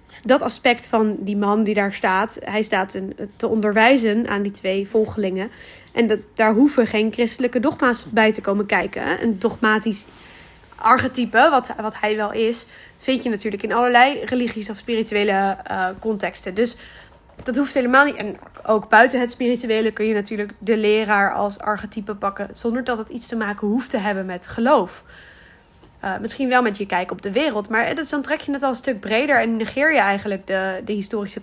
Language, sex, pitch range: Dutch, female, 210-245 Hz